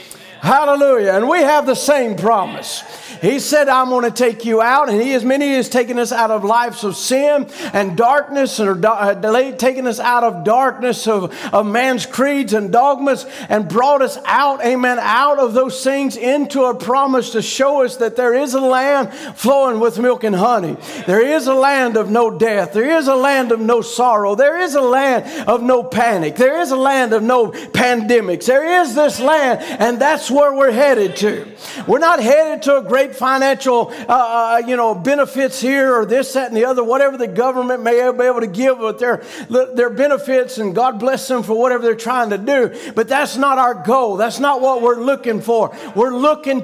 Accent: American